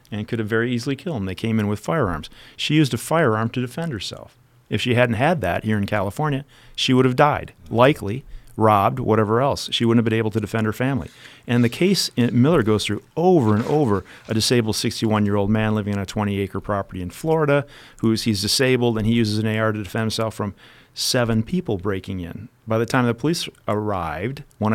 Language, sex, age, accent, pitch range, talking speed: English, male, 40-59, American, 105-130 Hz, 215 wpm